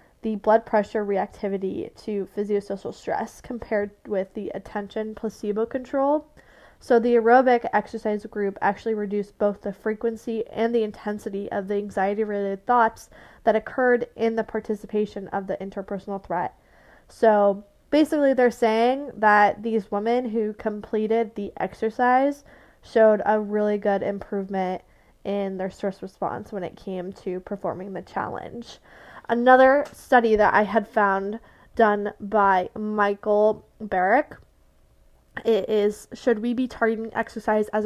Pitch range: 205-230 Hz